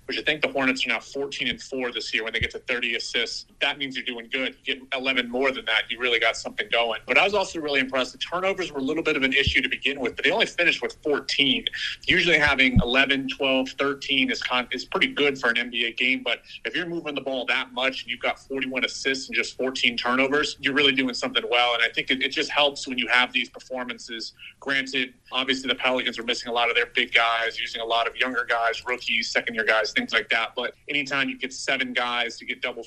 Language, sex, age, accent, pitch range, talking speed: English, male, 30-49, American, 120-140 Hz, 255 wpm